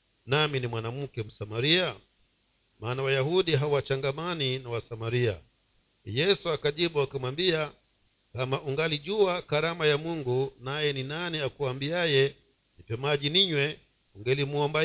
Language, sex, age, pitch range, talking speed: Swahili, male, 50-69, 125-160 Hz, 100 wpm